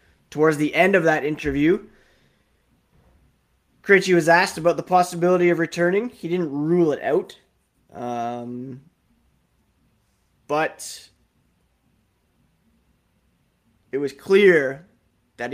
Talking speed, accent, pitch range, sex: 95 wpm, American, 115-150 Hz, male